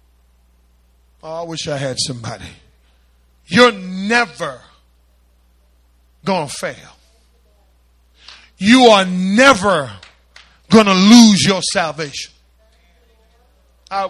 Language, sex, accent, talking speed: English, male, American, 80 wpm